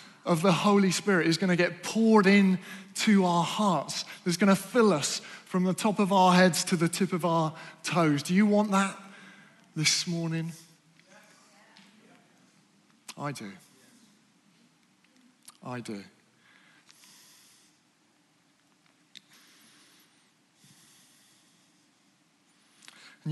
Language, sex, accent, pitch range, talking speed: English, male, British, 145-185 Hz, 105 wpm